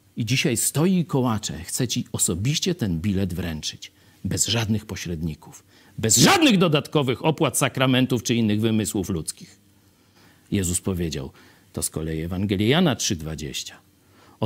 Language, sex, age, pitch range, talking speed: Polish, male, 50-69, 95-145 Hz, 125 wpm